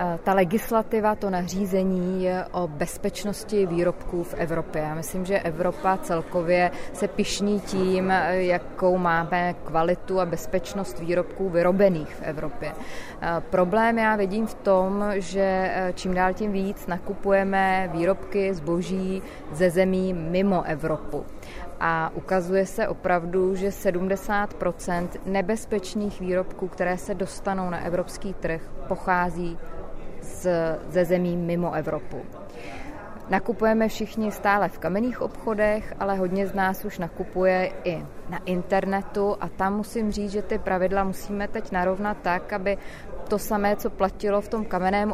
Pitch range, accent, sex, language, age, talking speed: 180-205 Hz, native, female, Czech, 20-39, 130 wpm